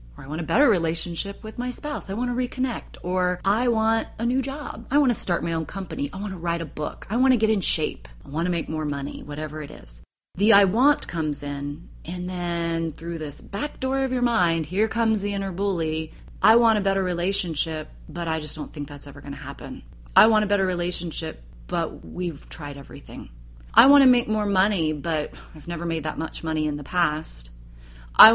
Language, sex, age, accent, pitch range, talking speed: English, female, 30-49, American, 160-225 Hz, 225 wpm